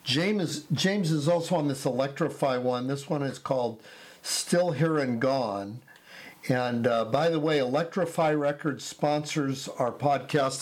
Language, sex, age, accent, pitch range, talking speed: English, male, 50-69, American, 135-160 Hz, 145 wpm